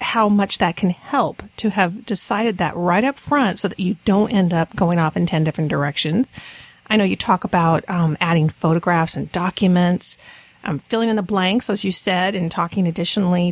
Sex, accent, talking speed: female, American, 200 wpm